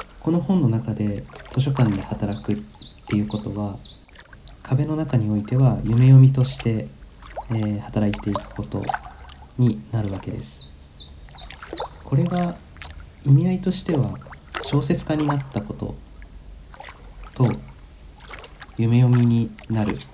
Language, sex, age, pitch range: Japanese, male, 40-59, 95-130 Hz